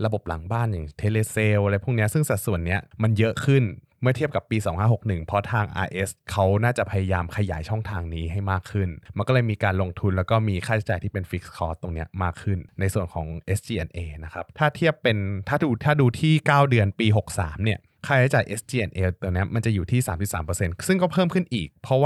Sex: male